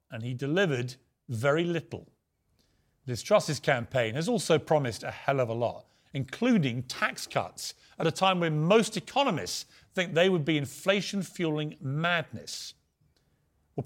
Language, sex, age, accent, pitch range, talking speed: English, male, 40-59, British, 145-190 Hz, 145 wpm